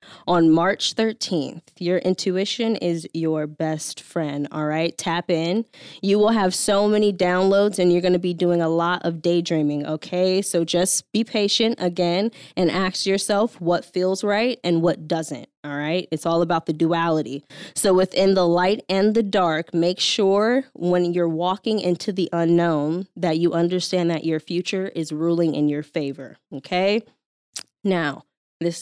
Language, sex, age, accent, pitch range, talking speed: English, female, 10-29, American, 165-205 Hz, 165 wpm